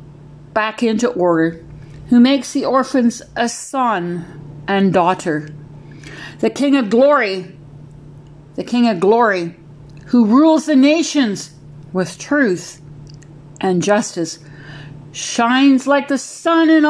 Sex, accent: female, American